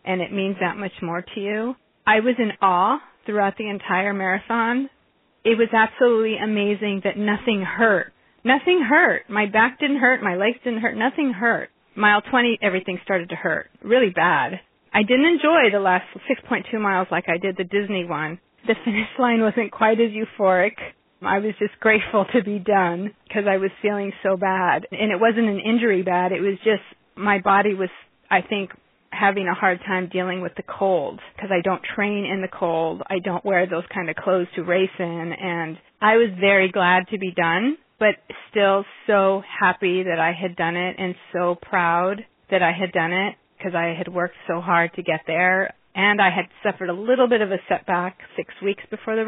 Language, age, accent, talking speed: English, 30-49, American, 200 wpm